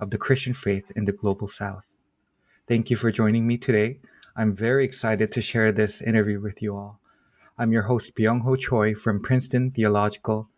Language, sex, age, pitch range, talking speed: English, male, 20-39, 105-125 Hz, 180 wpm